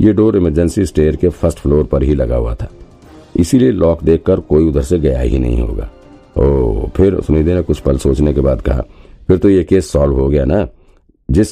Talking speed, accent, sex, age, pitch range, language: 125 wpm, native, male, 50-69, 70-85 Hz, Hindi